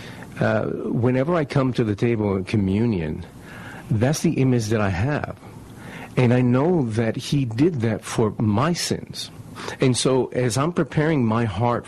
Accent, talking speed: American, 160 wpm